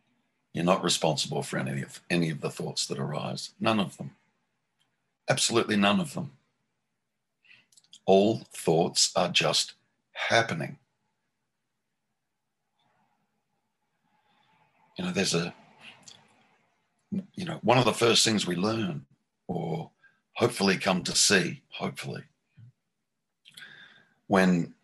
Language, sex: English, male